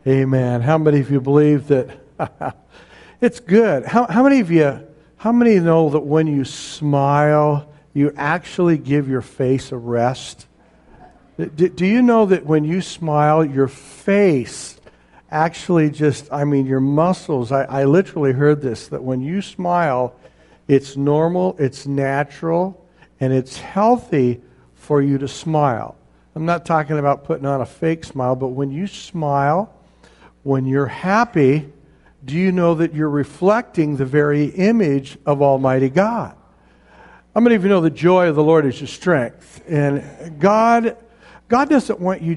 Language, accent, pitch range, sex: English, American, 135-170 Hz, male